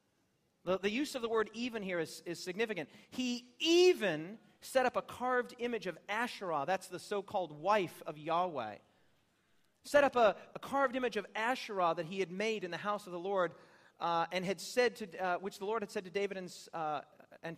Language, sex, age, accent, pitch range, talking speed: English, male, 40-59, American, 185-235 Hz, 205 wpm